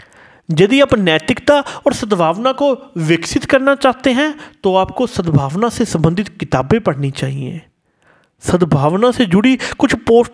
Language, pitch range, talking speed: Hindi, 155-255 Hz, 135 wpm